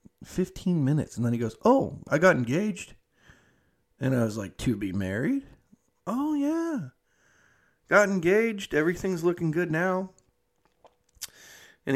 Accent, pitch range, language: American, 110-160 Hz, English